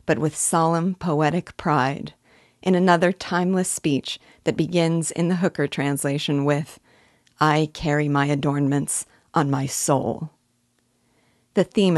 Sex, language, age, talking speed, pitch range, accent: female, English, 40-59, 125 wpm, 145-180 Hz, American